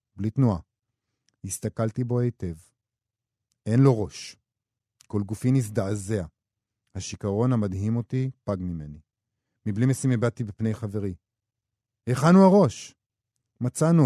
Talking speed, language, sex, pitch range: 105 wpm, Hebrew, male, 95-120 Hz